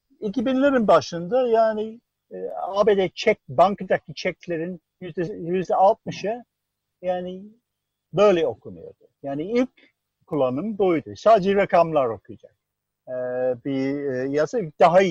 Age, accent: 60-79, native